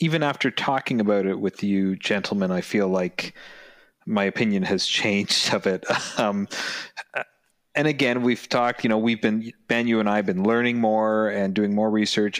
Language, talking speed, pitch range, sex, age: English, 185 wpm, 95-115 Hz, male, 30-49